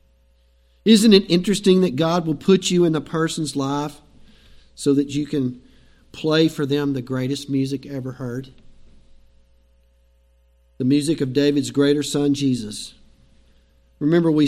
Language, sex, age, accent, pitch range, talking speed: English, male, 50-69, American, 135-180 Hz, 135 wpm